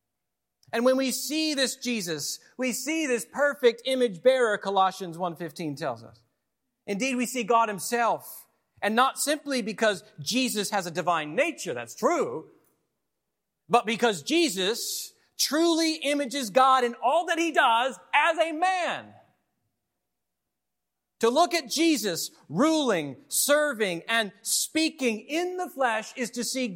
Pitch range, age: 165-260 Hz, 40-59